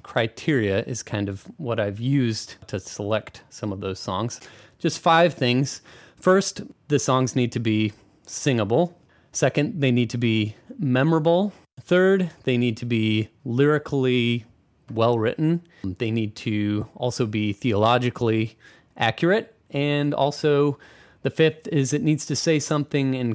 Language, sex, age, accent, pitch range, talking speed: English, male, 30-49, American, 110-145 Hz, 140 wpm